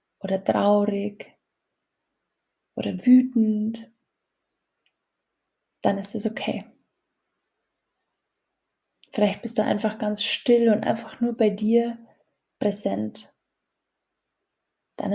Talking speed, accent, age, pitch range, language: 85 wpm, German, 20-39, 205-235 Hz, German